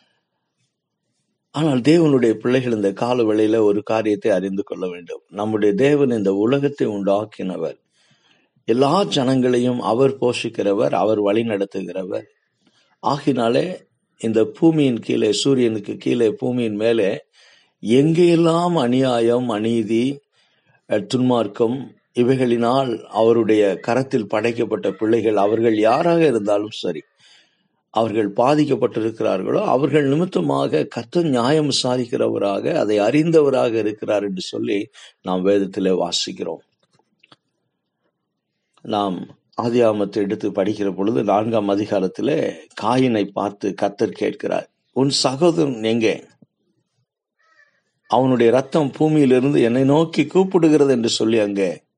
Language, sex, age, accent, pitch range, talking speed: Tamil, male, 50-69, native, 110-135 Hz, 95 wpm